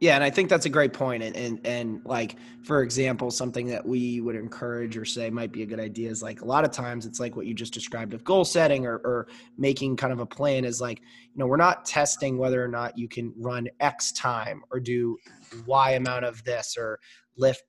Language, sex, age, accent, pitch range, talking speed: English, male, 20-39, American, 120-140 Hz, 240 wpm